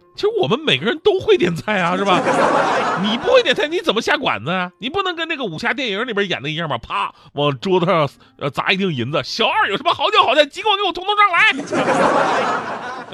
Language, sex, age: Chinese, male, 30-49